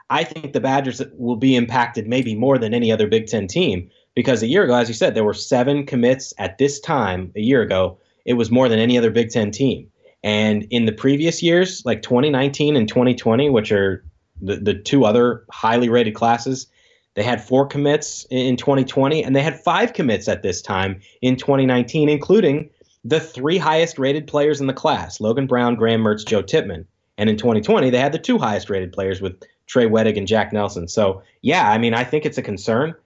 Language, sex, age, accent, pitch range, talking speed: English, male, 20-39, American, 105-135 Hz, 210 wpm